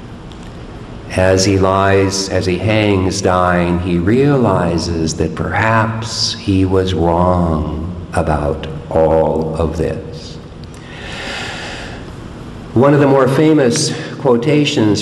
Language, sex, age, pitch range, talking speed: English, male, 50-69, 90-120 Hz, 95 wpm